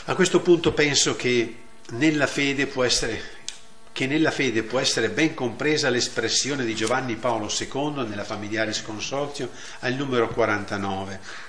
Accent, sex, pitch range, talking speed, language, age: native, male, 110-155 Hz, 140 wpm, Italian, 50-69